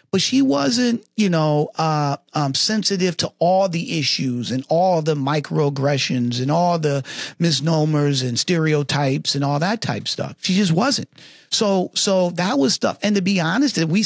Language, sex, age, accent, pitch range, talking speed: English, male, 40-59, American, 150-225 Hz, 175 wpm